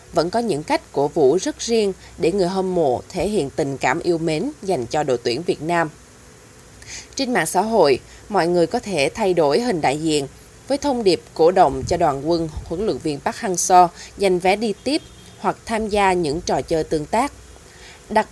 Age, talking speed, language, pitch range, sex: 20-39, 205 wpm, Vietnamese, 165-220 Hz, female